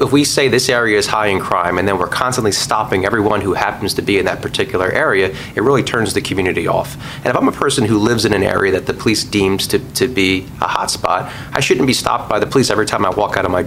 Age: 30-49